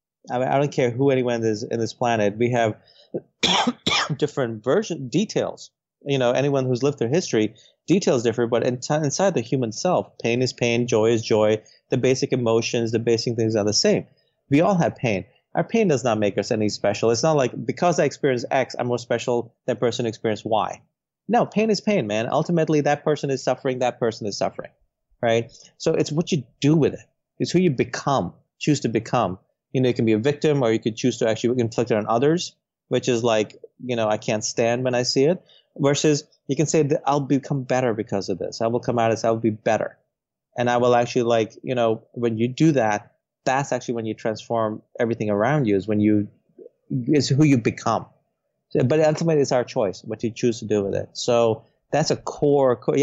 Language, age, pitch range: English, 30-49, 115-145 Hz